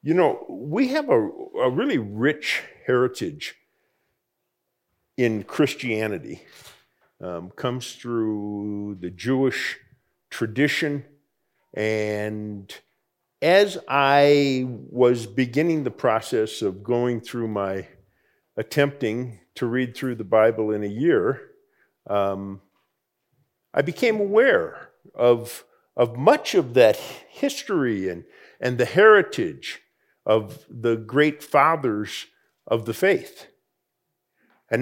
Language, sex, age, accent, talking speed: English, male, 50-69, American, 100 wpm